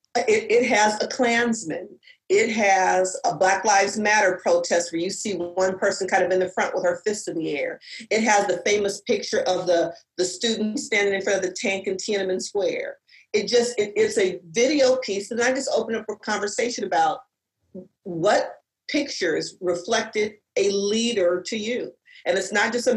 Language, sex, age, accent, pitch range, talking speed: English, female, 40-59, American, 195-255 Hz, 190 wpm